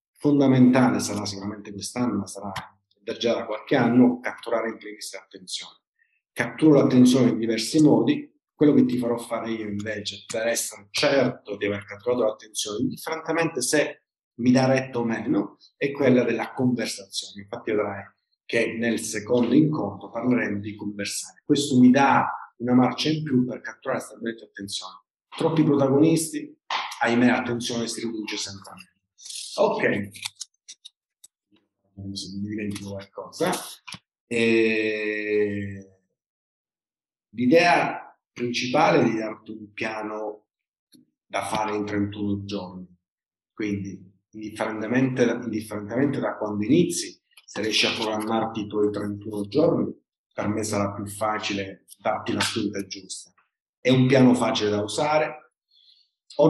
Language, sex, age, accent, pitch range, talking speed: Italian, male, 40-59, native, 100-125 Hz, 125 wpm